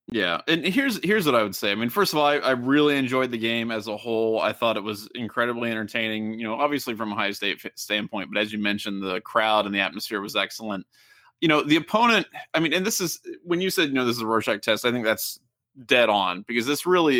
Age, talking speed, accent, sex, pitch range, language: 20-39, 260 wpm, American, male, 105-140 Hz, English